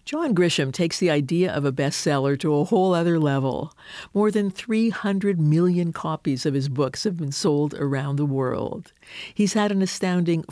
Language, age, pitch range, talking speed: English, 50-69, 145-185 Hz, 175 wpm